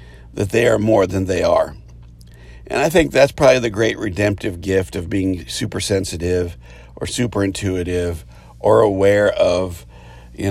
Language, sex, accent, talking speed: English, male, American, 155 wpm